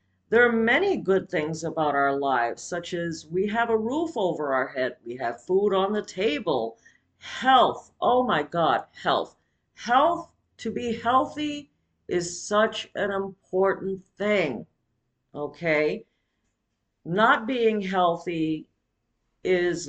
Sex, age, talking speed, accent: female, 50-69, 125 wpm, American